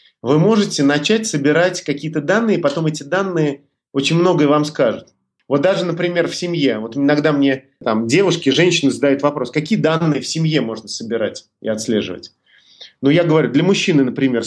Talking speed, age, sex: 165 wpm, 30-49, male